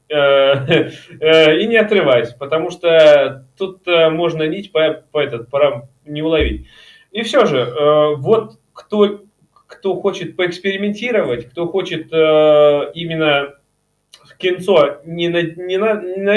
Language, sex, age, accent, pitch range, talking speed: Russian, male, 20-39, native, 140-180 Hz, 110 wpm